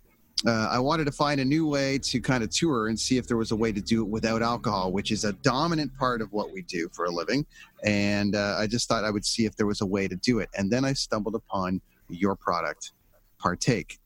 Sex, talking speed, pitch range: male, 255 wpm, 100-130 Hz